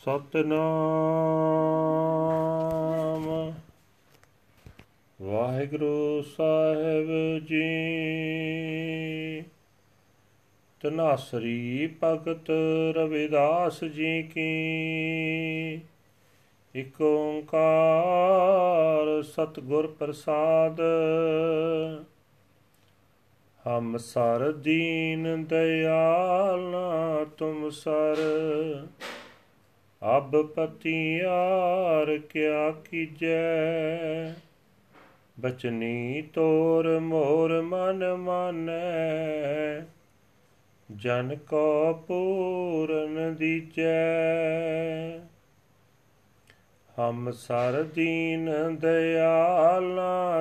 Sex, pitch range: male, 150-160 Hz